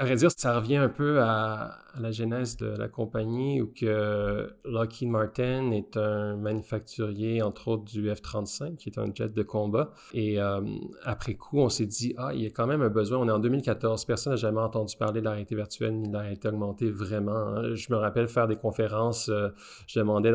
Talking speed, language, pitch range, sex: 210 wpm, English, 105-120 Hz, male